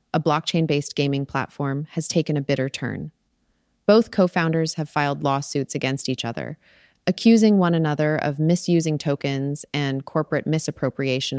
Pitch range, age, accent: 135-170 Hz, 30-49, American